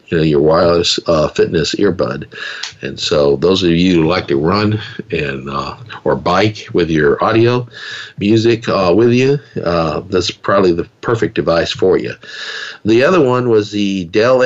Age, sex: 50-69, male